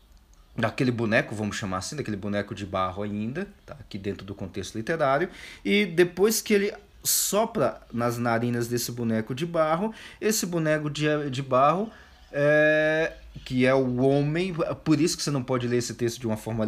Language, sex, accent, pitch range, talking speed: Portuguese, male, Brazilian, 105-150 Hz, 175 wpm